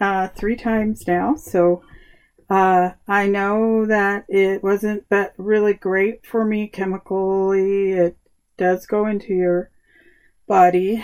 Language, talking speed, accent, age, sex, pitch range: English, 125 wpm, American, 40-59, female, 180-215 Hz